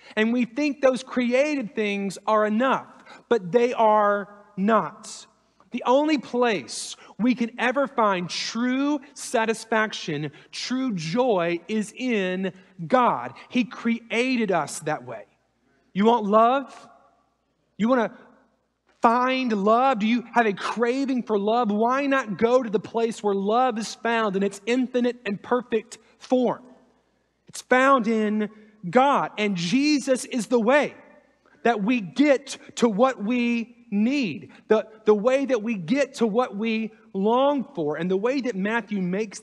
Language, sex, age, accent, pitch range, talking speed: English, male, 30-49, American, 195-245 Hz, 145 wpm